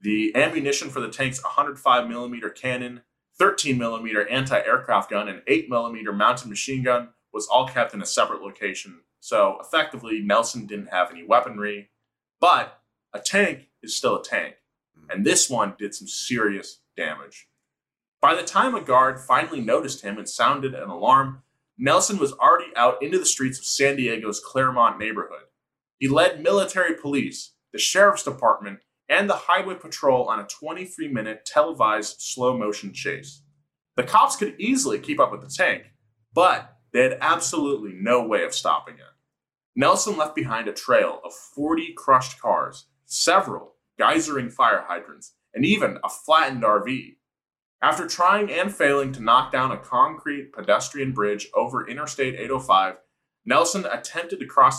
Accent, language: American, English